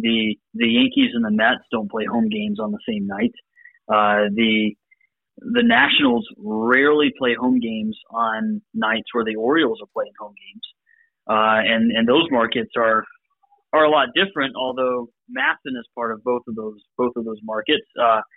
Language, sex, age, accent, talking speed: English, male, 30-49, American, 175 wpm